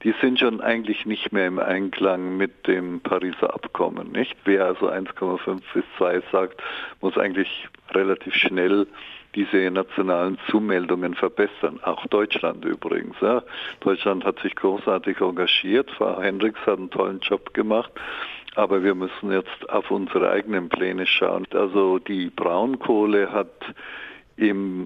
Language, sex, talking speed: German, male, 135 wpm